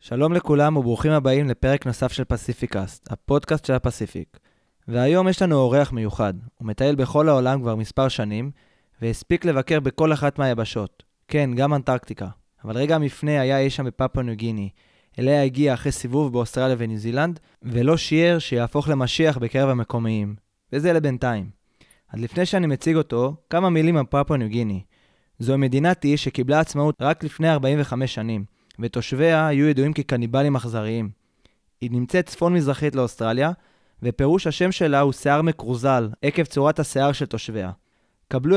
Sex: male